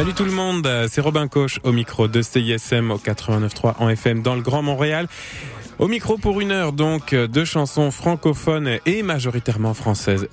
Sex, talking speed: male, 180 wpm